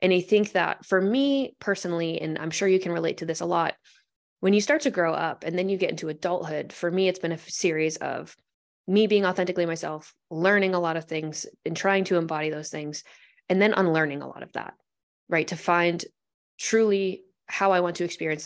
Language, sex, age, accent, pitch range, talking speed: English, female, 20-39, American, 155-185 Hz, 220 wpm